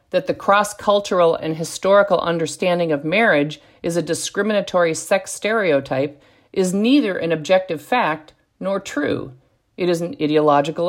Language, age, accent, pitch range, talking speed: English, 50-69, American, 155-205 Hz, 130 wpm